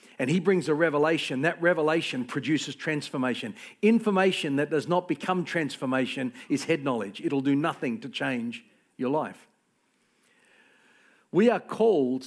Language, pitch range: English, 135-190 Hz